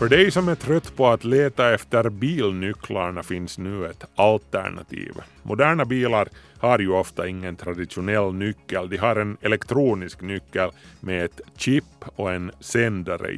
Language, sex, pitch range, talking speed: Swedish, male, 95-125 Hz, 150 wpm